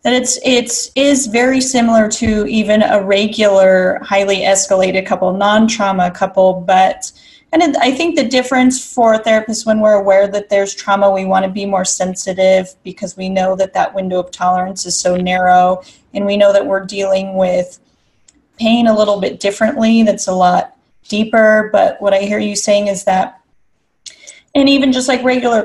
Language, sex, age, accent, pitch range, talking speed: English, female, 30-49, American, 190-225 Hz, 180 wpm